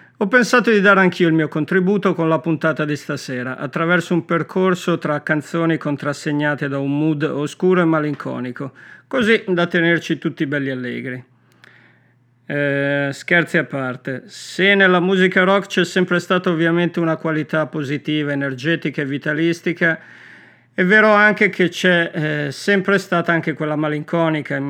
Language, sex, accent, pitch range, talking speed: Italian, male, native, 145-180 Hz, 145 wpm